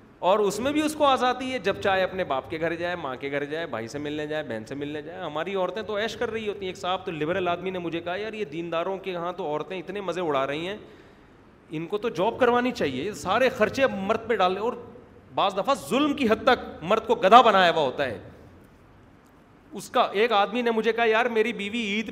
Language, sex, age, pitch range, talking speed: Urdu, male, 30-49, 180-240 Hz, 245 wpm